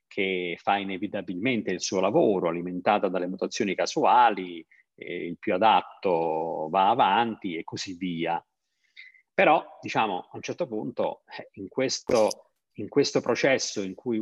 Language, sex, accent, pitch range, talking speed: Italian, male, native, 95-125 Hz, 135 wpm